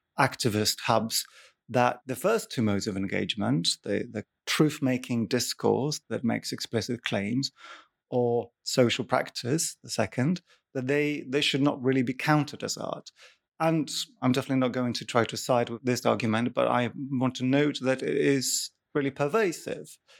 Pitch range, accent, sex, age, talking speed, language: 115-145 Hz, British, male, 30-49, 160 wpm, English